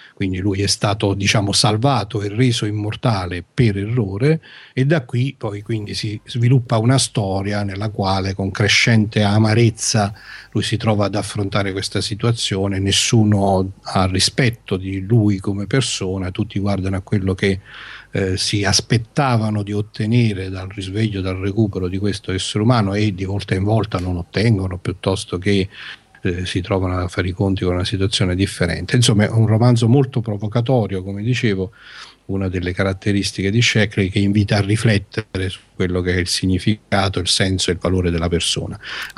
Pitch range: 95-115 Hz